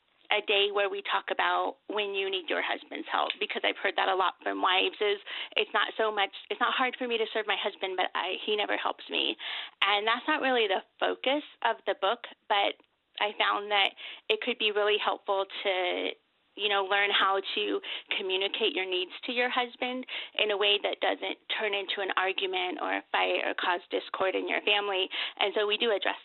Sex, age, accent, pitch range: female, 30-49, American, 195-275 Hz